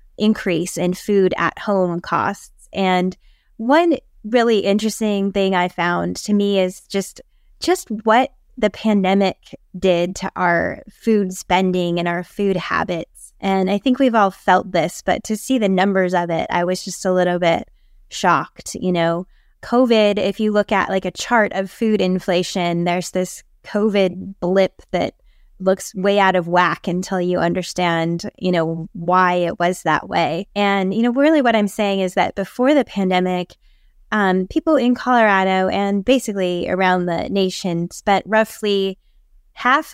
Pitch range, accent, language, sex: 180-215 Hz, American, English, female